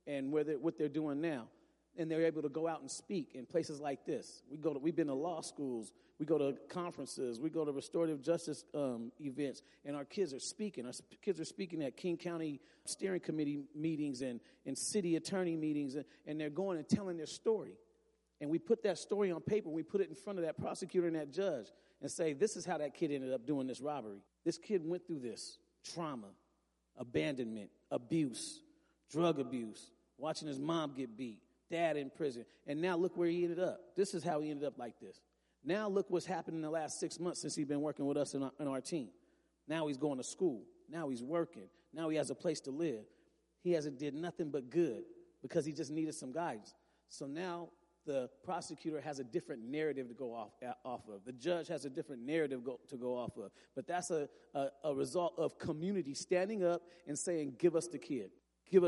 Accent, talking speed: American, 220 wpm